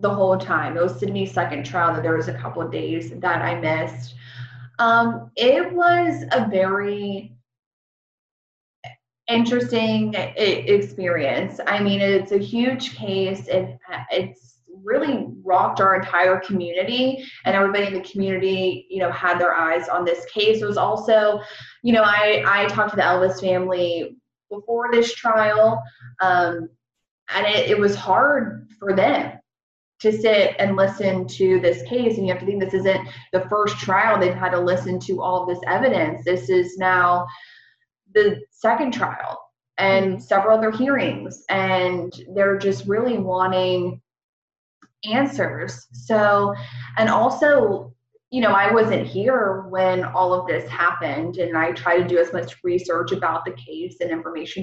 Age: 20-39